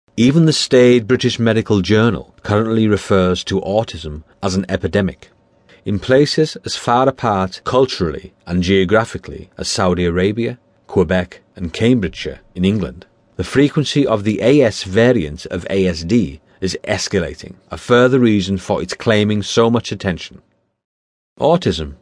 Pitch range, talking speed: 95-115 Hz, 135 wpm